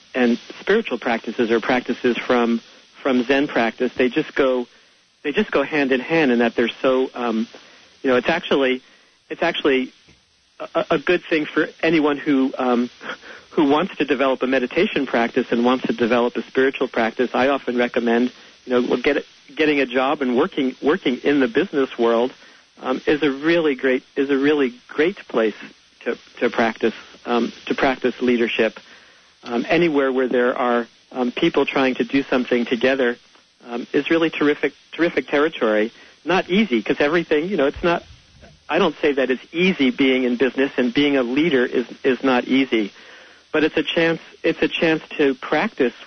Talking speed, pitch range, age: 175 wpm, 125-145 Hz, 50-69